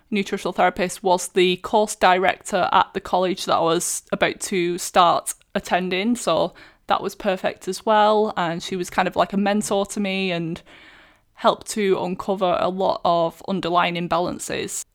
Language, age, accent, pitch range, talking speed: English, 20-39, British, 175-205 Hz, 165 wpm